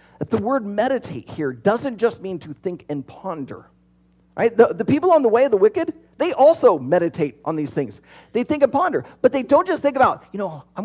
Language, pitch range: English, 140-235 Hz